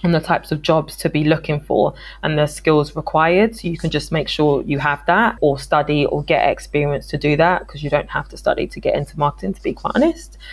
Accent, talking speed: British, 250 wpm